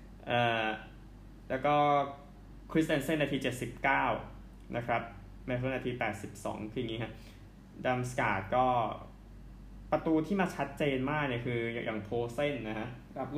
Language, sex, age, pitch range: Thai, male, 20-39, 110-135 Hz